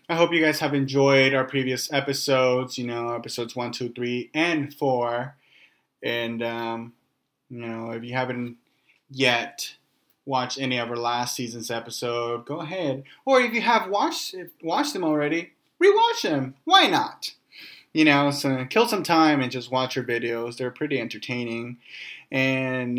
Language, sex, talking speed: English, male, 160 wpm